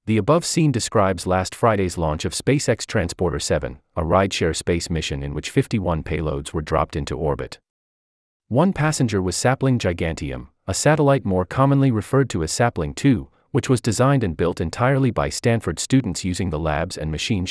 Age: 30-49